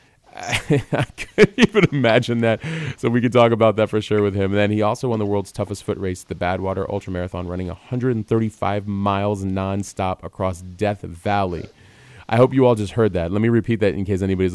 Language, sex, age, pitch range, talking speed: English, male, 30-49, 95-110 Hz, 205 wpm